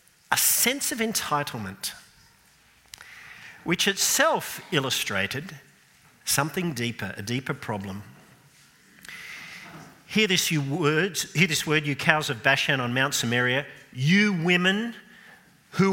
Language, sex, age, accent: English, male, 50-69, Australian